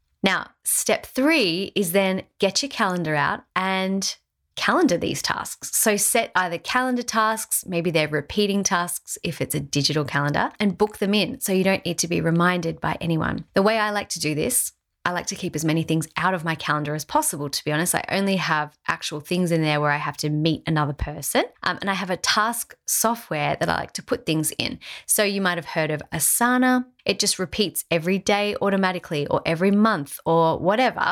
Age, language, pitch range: 30-49, English, 165-215 Hz